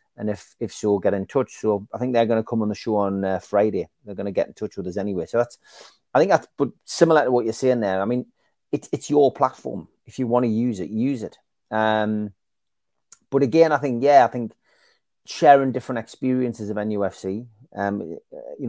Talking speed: 225 wpm